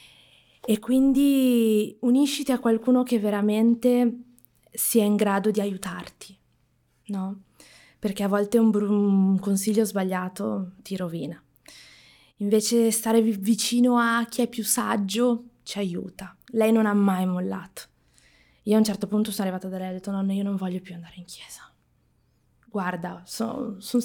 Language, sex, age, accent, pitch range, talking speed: Italian, female, 20-39, native, 190-230 Hz, 145 wpm